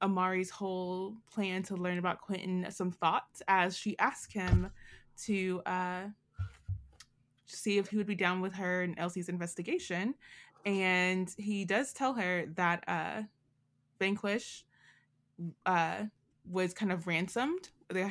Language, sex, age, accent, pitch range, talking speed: English, female, 20-39, American, 170-205 Hz, 135 wpm